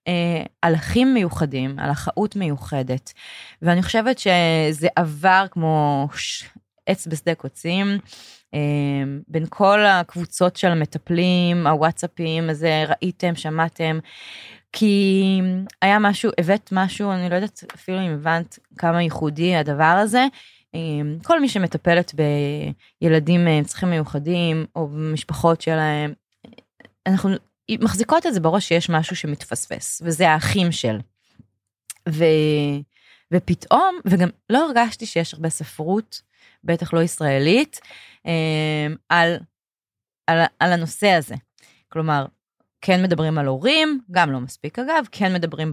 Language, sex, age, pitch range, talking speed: Hebrew, female, 20-39, 150-190 Hz, 115 wpm